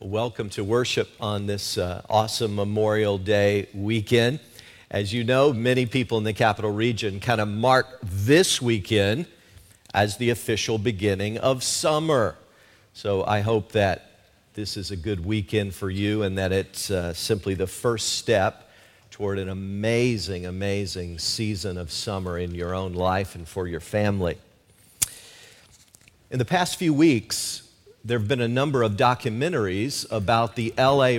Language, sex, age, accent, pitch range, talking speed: English, male, 50-69, American, 100-120 Hz, 150 wpm